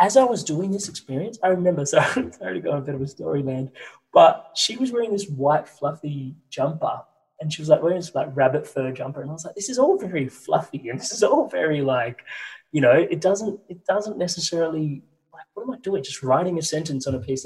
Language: English